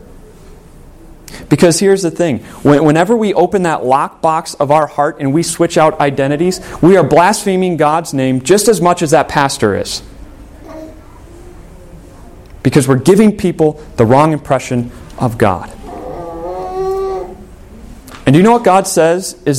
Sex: male